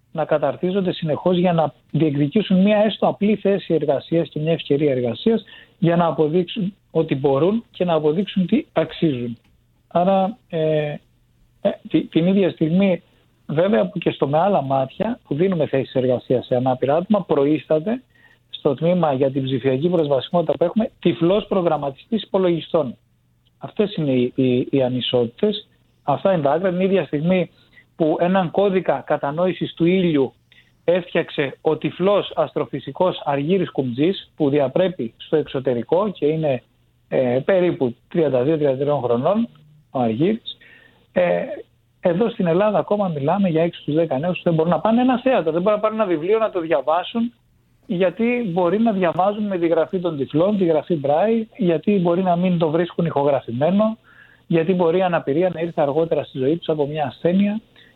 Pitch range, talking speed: 145-190 Hz, 155 wpm